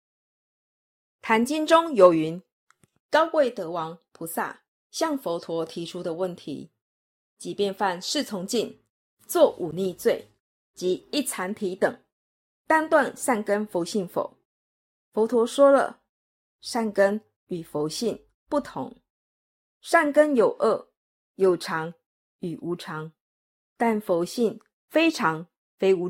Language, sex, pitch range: Chinese, female, 175-265 Hz